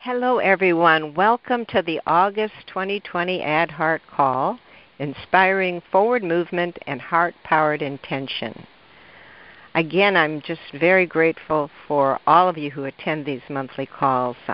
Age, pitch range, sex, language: 60-79, 140-180 Hz, female, English